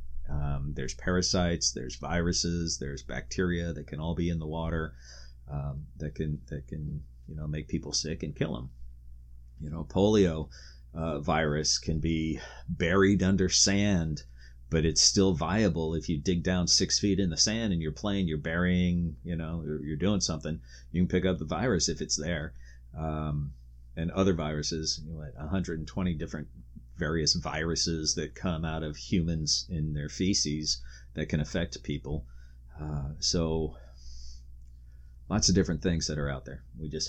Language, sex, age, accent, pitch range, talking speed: English, male, 30-49, American, 70-90 Hz, 175 wpm